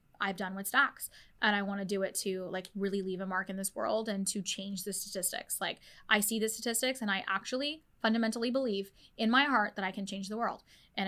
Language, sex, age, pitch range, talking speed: English, female, 10-29, 200-230 Hz, 240 wpm